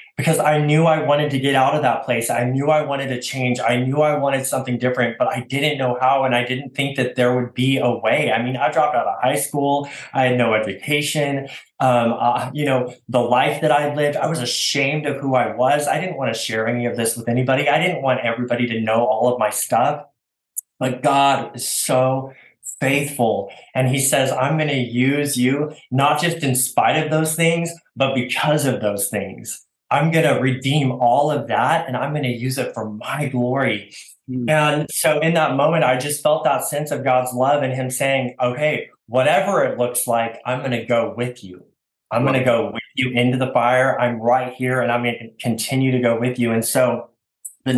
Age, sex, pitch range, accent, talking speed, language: 20-39, male, 120-145 Hz, American, 225 wpm, English